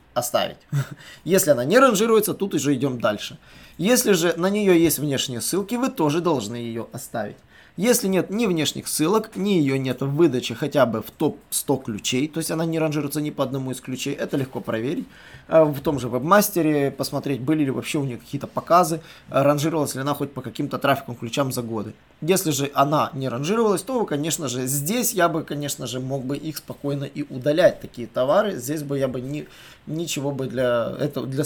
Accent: native